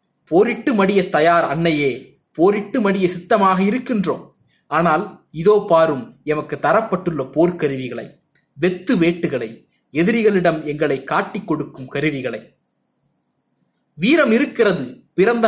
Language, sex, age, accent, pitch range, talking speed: Tamil, male, 30-49, native, 165-220 Hz, 95 wpm